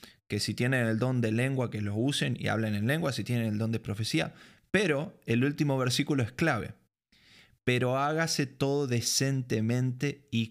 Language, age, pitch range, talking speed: Spanish, 20-39, 110-135 Hz, 175 wpm